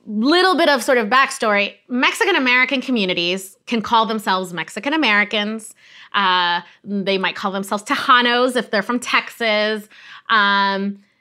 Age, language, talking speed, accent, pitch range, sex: 30-49, English, 120 wpm, American, 200-250 Hz, female